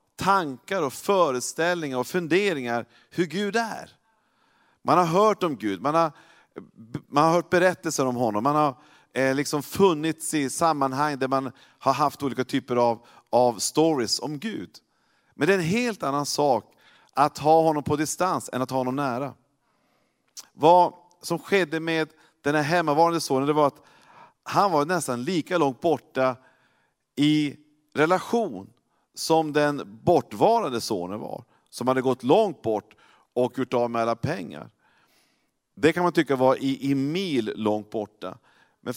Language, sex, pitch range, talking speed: Swedish, male, 135-170 Hz, 155 wpm